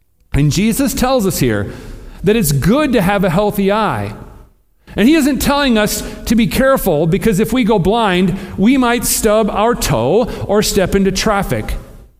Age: 40-59